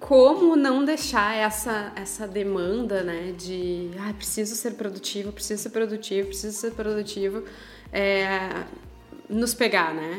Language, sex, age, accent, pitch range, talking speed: English, female, 20-39, Brazilian, 195-235 Hz, 130 wpm